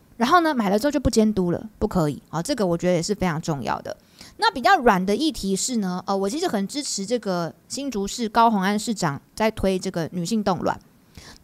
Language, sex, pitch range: Chinese, female, 180-250 Hz